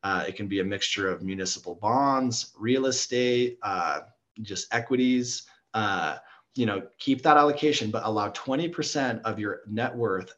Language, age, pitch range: English, 30-49, 105-130 Hz